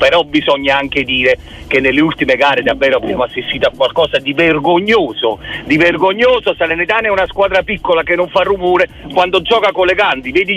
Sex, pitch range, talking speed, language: male, 165-220 Hz, 180 wpm, Italian